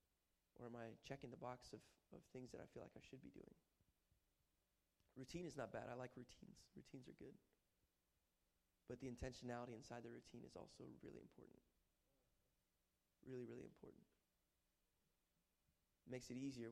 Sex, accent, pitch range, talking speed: male, American, 85-125 Hz, 155 wpm